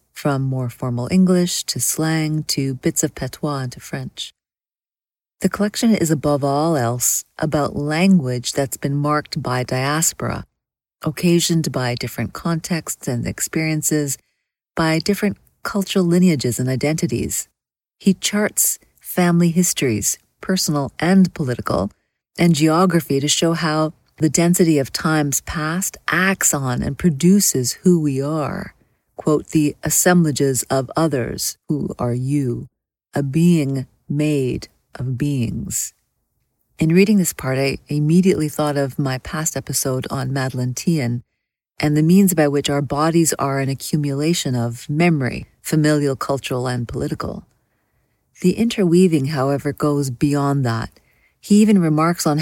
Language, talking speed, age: English, 130 wpm, 40-59